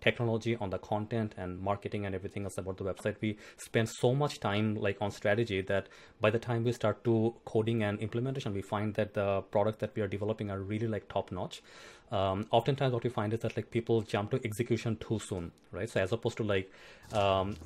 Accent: Indian